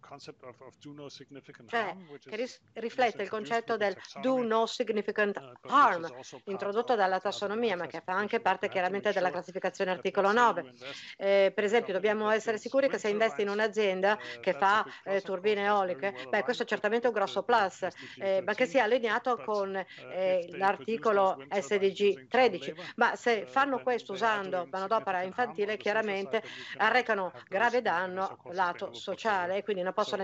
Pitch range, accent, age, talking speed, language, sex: 185-230 Hz, Italian, 50-69, 145 wpm, English, female